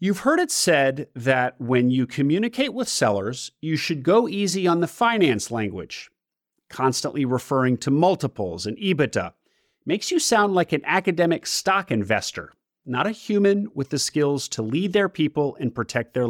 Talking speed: 165 wpm